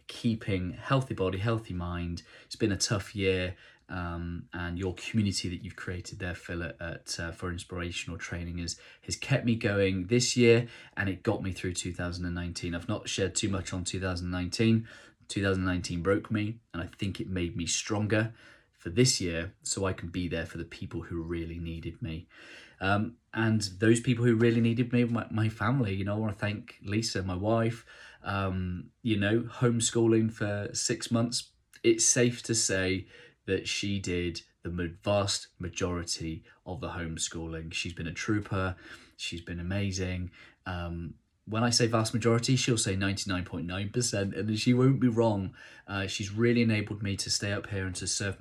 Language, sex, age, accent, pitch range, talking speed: English, male, 30-49, British, 90-115 Hz, 175 wpm